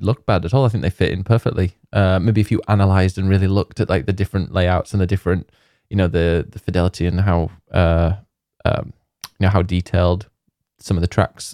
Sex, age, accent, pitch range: male, 20-39, British, 90-115 Hz